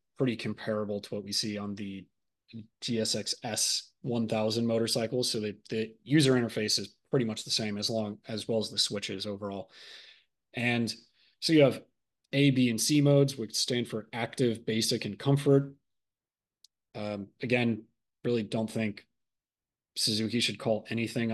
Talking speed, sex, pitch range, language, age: 150 wpm, male, 105-130 Hz, English, 30-49